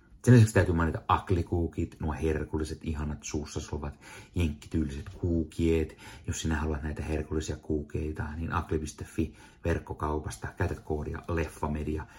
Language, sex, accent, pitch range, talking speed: Finnish, male, native, 80-110 Hz, 115 wpm